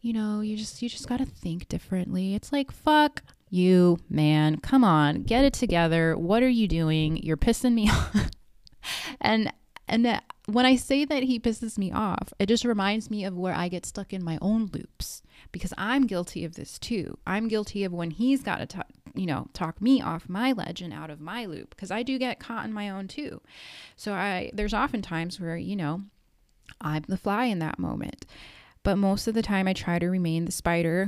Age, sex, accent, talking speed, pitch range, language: 20-39, female, American, 210 wpm, 165-225 Hz, English